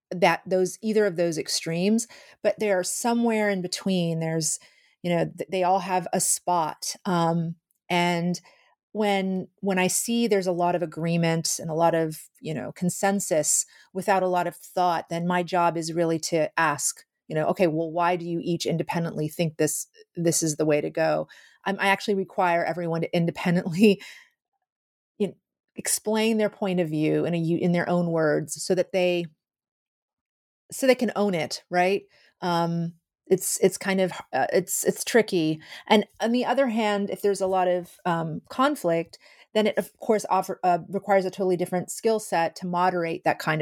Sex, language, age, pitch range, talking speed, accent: female, English, 30-49, 165-195 Hz, 185 wpm, American